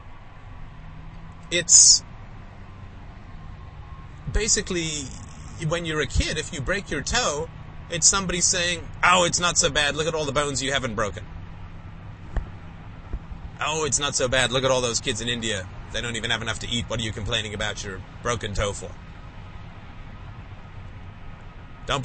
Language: English